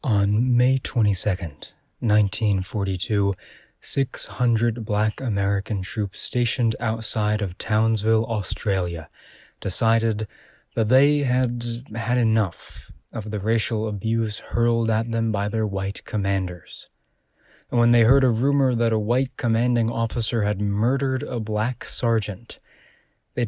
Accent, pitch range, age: American, 100-115 Hz, 20-39